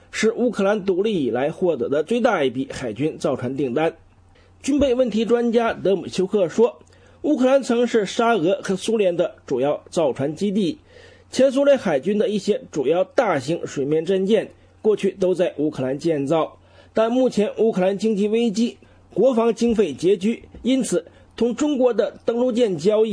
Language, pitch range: English, 155-235 Hz